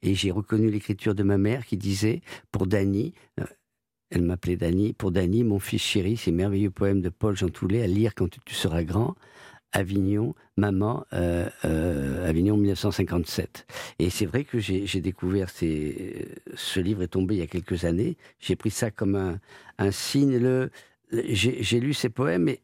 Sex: male